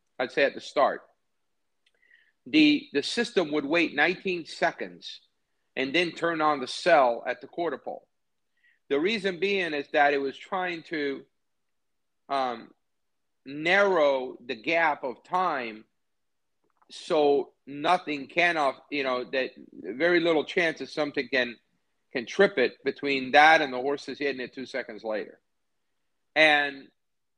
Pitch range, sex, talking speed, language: 140-190 Hz, male, 140 wpm, English